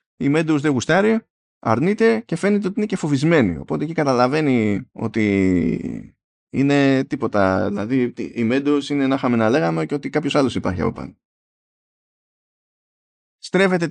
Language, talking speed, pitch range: Greek, 140 wpm, 105-145 Hz